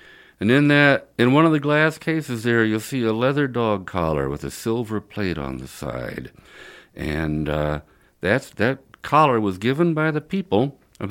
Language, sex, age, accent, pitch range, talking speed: English, male, 60-79, American, 90-135 Hz, 185 wpm